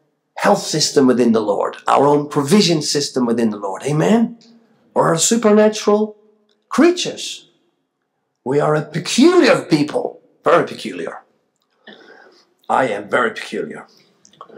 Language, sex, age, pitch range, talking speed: English, male, 50-69, 145-230 Hz, 115 wpm